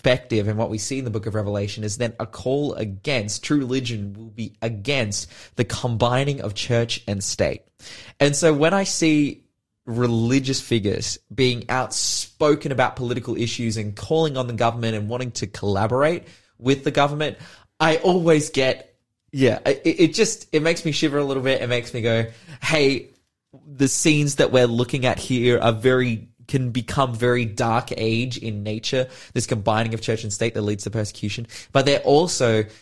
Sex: male